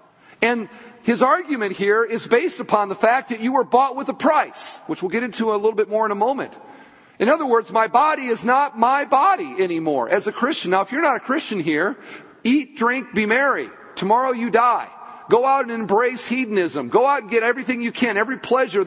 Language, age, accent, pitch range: English, 40-59, American, 200-260 Hz